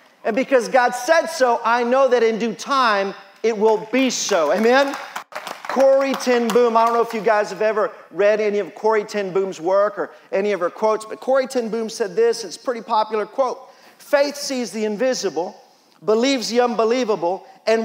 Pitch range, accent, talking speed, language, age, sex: 230-280 Hz, American, 195 wpm, English, 40-59, male